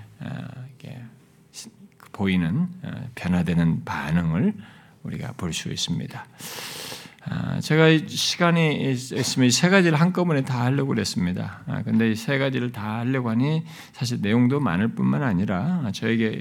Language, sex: Korean, male